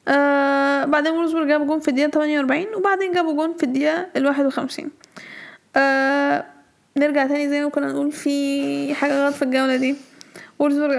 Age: 10-29